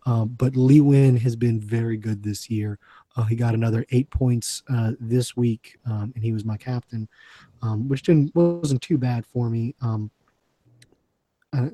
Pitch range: 115-135 Hz